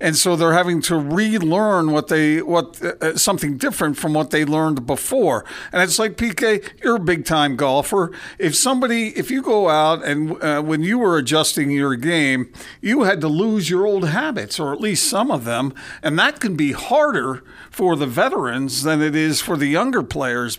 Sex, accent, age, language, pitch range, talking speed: male, American, 50-69, English, 145-205 Hz, 200 wpm